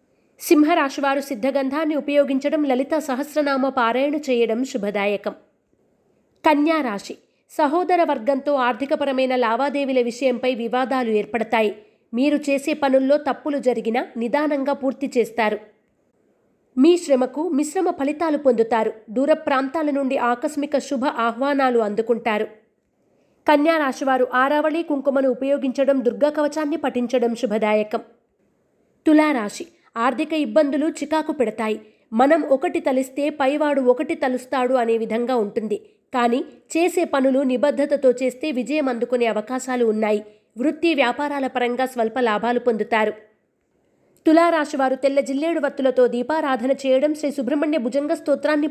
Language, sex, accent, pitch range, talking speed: Telugu, female, native, 240-295 Hz, 100 wpm